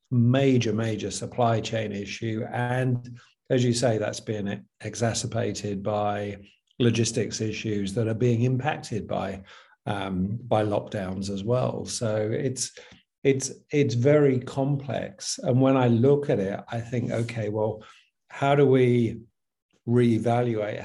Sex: male